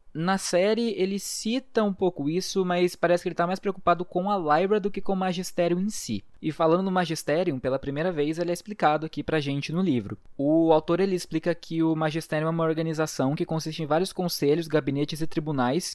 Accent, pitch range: Brazilian, 150-180 Hz